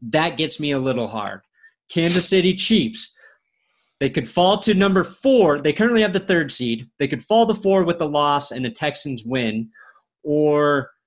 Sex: male